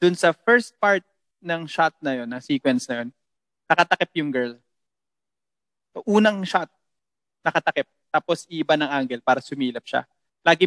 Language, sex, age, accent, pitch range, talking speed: Filipino, male, 20-39, native, 130-165 Hz, 150 wpm